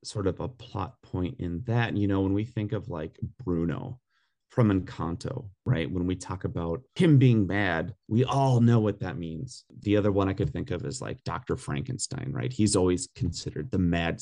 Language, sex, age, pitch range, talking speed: English, male, 30-49, 90-125 Hz, 205 wpm